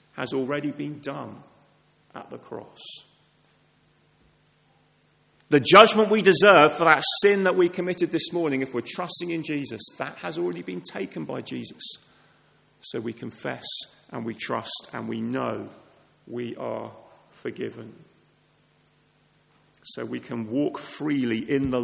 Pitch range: 120-160 Hz